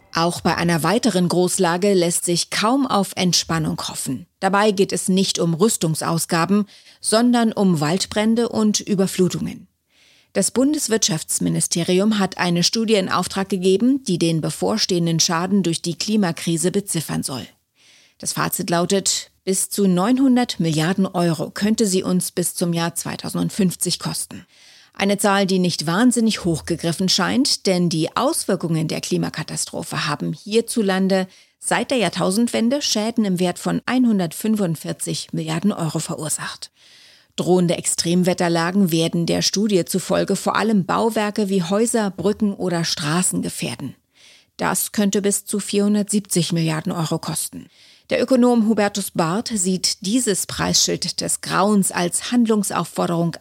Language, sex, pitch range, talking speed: German, female, 170-210 Hz, 130 wpm